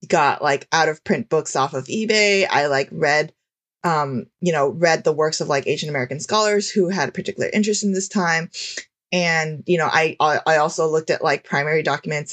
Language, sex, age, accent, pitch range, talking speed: English, female, 20-39, American, 140-175 Hz, 210 wpm